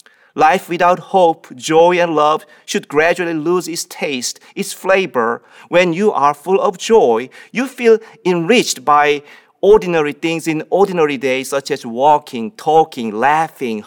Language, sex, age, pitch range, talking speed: English, male, 40-59, 140-185 Hz, 145 wpm